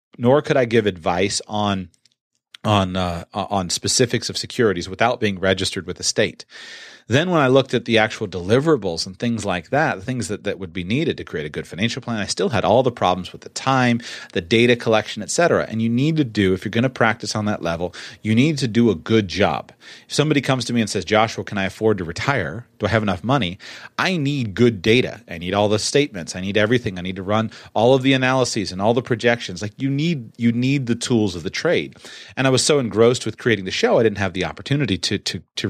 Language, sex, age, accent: English, male, 30-49, American